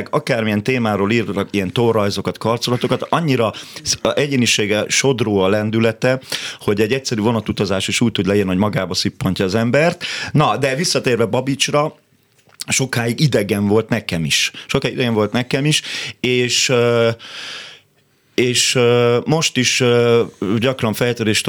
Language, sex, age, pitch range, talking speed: Hungarian, male, 30-49, 100-120 Hz, 130 wpm